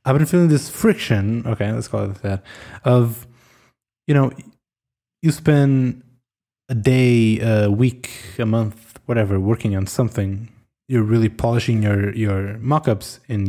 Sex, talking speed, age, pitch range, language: male, 140 wpm, 20-39, 105-130 Hz, English